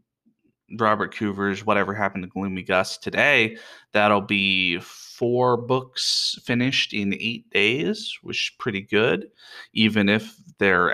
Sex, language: male, English